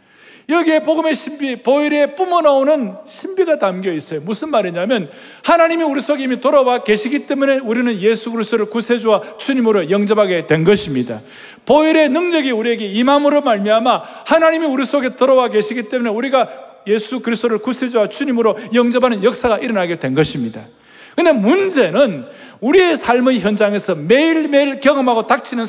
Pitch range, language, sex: 215-300 Hz, Korean, male